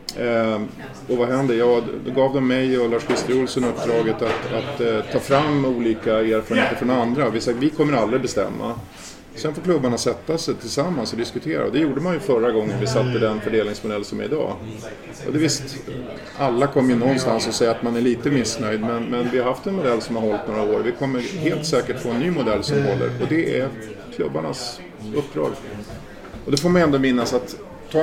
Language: English